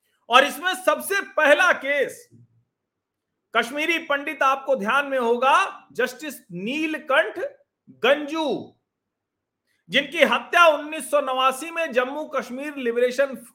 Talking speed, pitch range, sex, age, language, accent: 95 wpm, 225-300 Hz, male, 50-69, Hindi, native